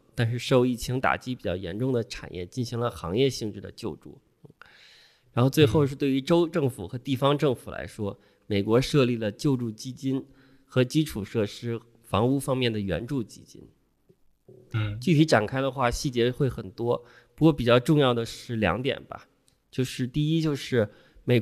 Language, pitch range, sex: Chinese, 110-135 Hz, male